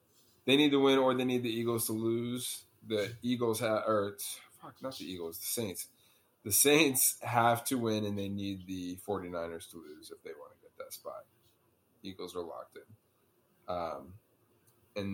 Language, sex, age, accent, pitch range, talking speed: English, male, 20-39, American, 95-120 Hz, 180 wpm